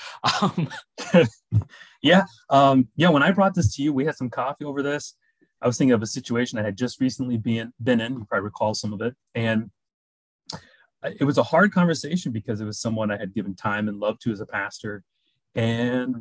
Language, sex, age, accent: English, male, 30-49, American